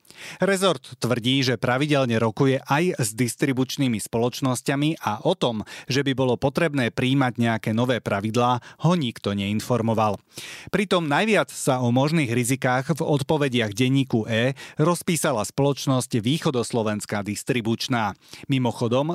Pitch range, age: 115-145 Hz, 30-49